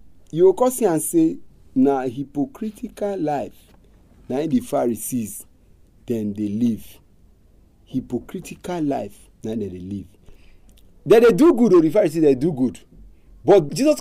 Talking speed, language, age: 140 wpm, English, 40-59